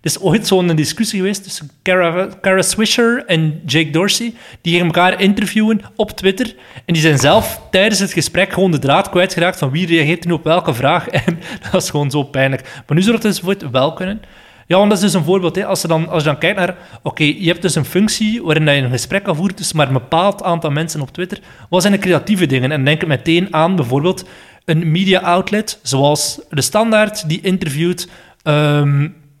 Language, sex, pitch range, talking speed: Dutch, male, 150-190 Hz, 220 wpm